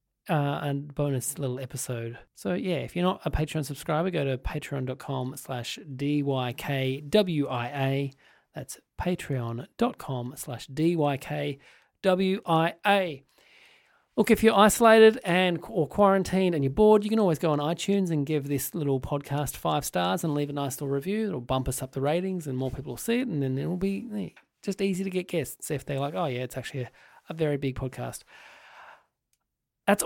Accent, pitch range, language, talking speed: Australian, 130-180 Hz, English, 190 wpm